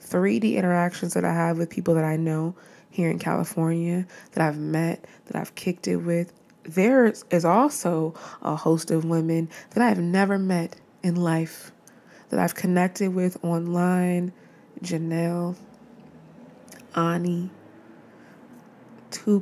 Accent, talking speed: American, 130 wpm